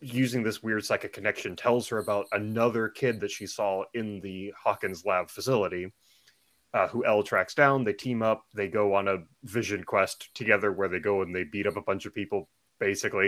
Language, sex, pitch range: English, male, 105-135 Hz